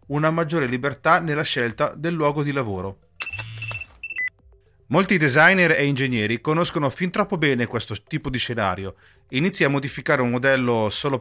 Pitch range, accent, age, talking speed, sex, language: 120-160 Hz, native, 40-59, 145 wpm, male, Italian